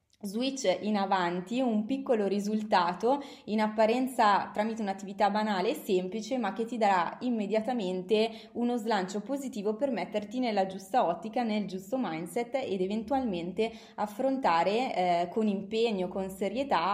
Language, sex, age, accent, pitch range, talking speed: Italian, female, 20-39, native, 185-225 Hz, 130 wpm